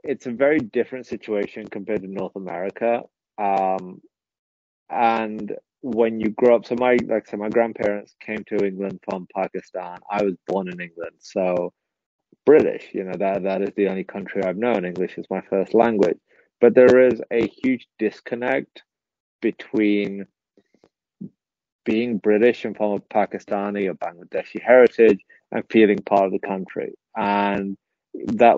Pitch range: 95-115 Hz